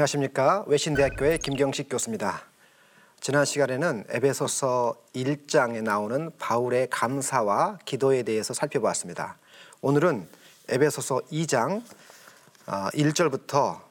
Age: 40-59